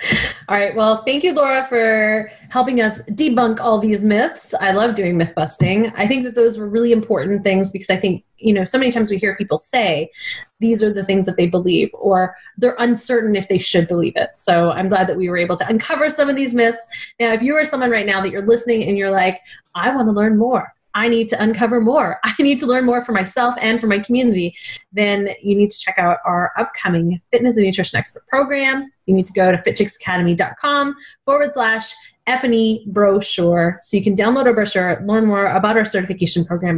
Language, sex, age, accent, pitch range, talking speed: English, female, 30-49, American, 185-235 Hz, 220 wpm